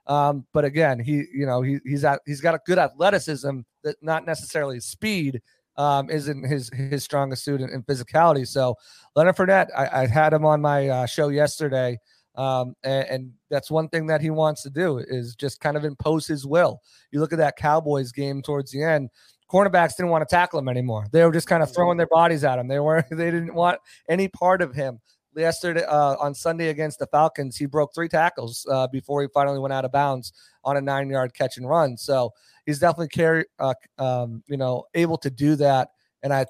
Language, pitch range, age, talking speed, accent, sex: English, 135-160 Hz, 30-49, 215 wpm, American, male